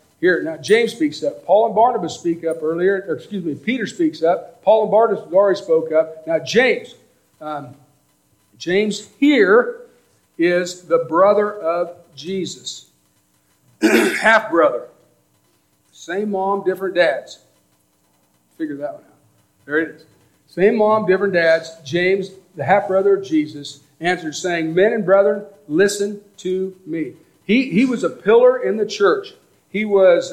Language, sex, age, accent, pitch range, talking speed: English, male, 50-69, American, 165-210 Hz, 140 wpm